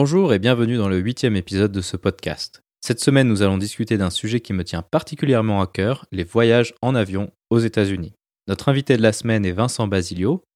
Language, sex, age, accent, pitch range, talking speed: French, male, 20-39, French, 100-125 Hz, 215 wpm